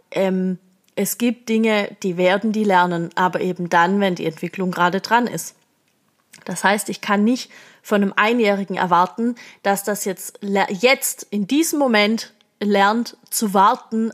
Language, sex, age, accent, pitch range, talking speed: German, female, 20-39, German, 200-260 Hz, 150 wpm